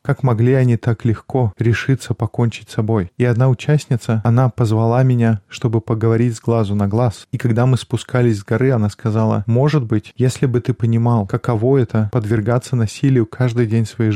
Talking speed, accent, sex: 180 wpm, native, male